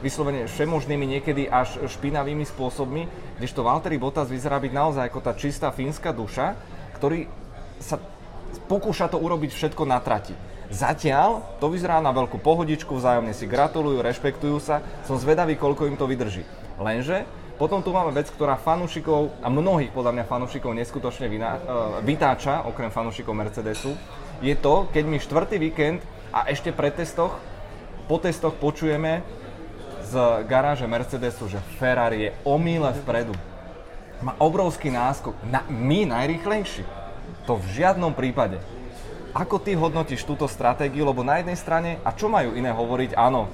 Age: 20-39